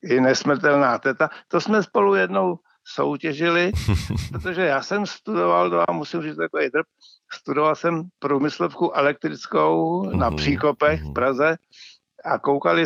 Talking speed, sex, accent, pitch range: 120 wpm, male, native, 140-185 Hz